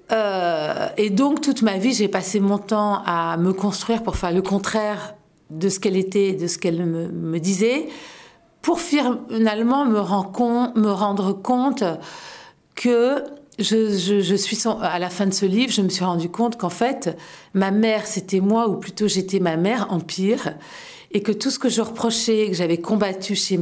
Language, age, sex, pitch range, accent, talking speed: French, 50-69, female, 190-240 Hz, French, 180 wpm